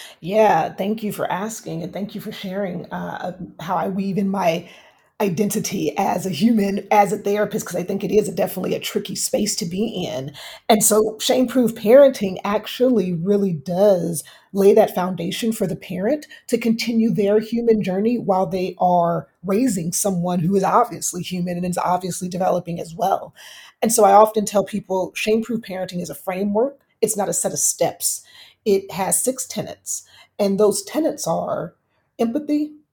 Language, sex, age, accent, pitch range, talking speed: English, female, 30-49, American, 185-225 Hz, 170 wpm